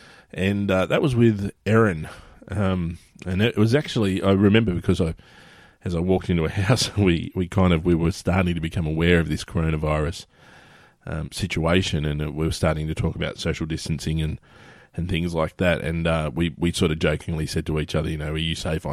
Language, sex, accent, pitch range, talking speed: English, male, Australian, 80-95 Hz, 205 wpm